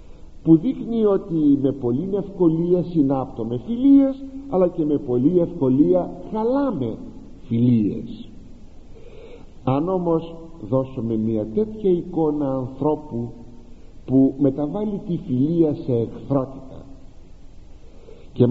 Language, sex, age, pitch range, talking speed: Greek, male, 50-69, 120-185 Hz, 95 wpm